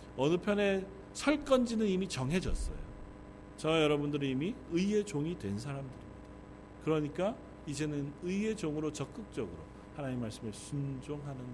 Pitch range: 100-155 Hz